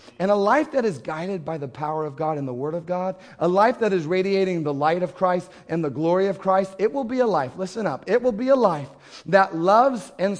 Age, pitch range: 30-49, 160-210 Hz